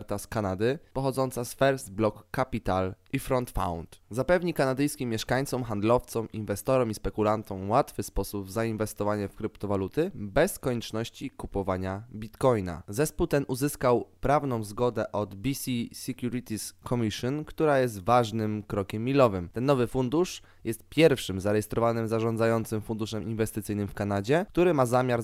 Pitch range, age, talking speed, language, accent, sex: 105-130 Hz, 20-39, 130 wpm, Polish, native, male